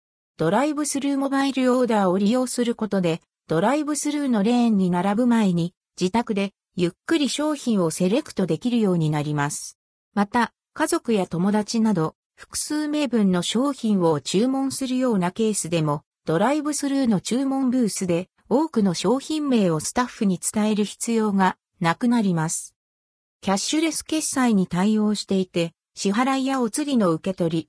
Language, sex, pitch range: Japanese, female, 170-265 Hz